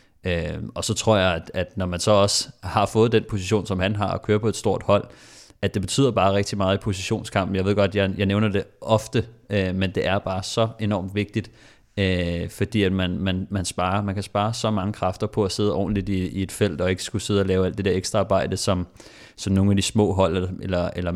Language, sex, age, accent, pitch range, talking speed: Danish, male, 30-49, native, 95-105 Hz, 250 wpm